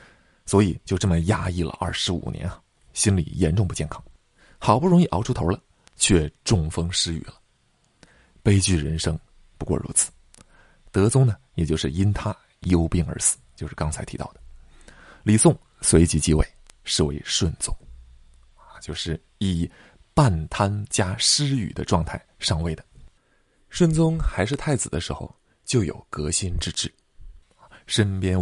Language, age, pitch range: Chinese, 20-39, 80-105 Hz